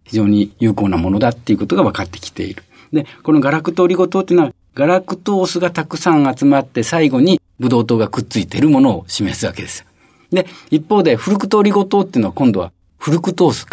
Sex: male